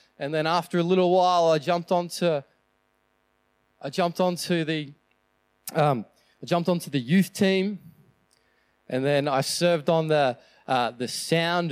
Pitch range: 160-205 Hz